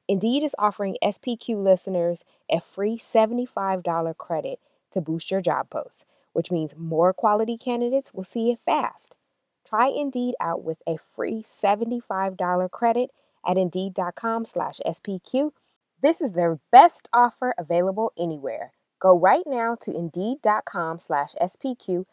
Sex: female